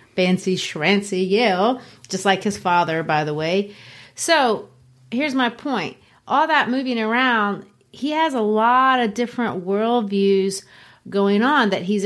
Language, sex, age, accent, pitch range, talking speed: English, female, 30-49, American, 175-215 Hz, 145 wpm